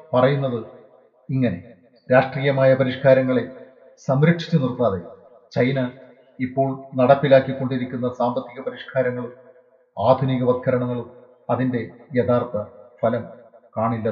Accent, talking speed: native, 70 wpm